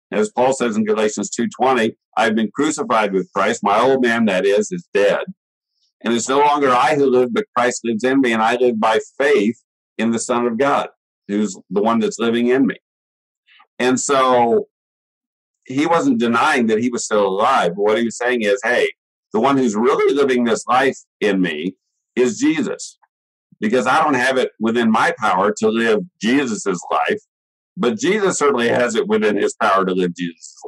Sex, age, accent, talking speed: male, 50-69, American, 190 wpm